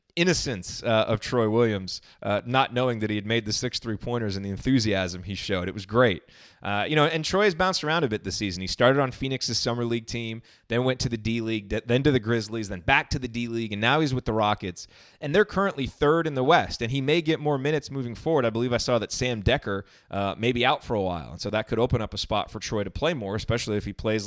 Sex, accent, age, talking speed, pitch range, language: male, American, 30-49, 270 wpm, 105-135 Hz, English